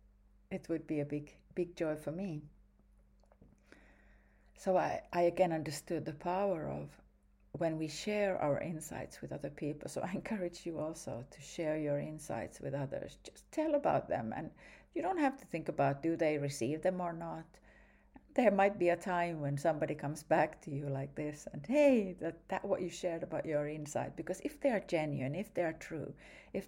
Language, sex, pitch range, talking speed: English, female, 140-180 Hz, 195 wpm